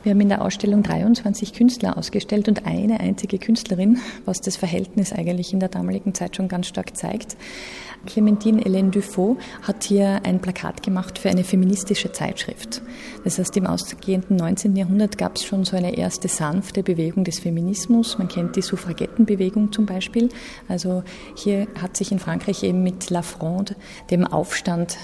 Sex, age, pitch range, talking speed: female, 30-49, 185-215 Hz, 165 wpm